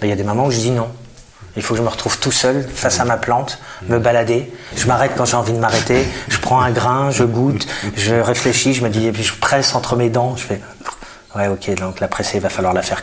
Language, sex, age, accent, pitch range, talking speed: French, male, 30-49, French, 105-125 Hz, 280 wpm